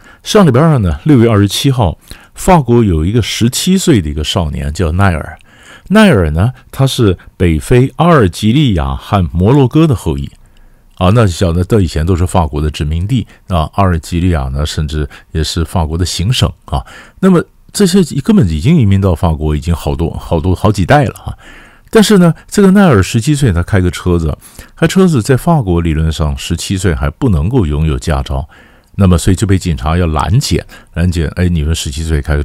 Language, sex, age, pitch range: Chinese, male, 50-69, 80-105 Hz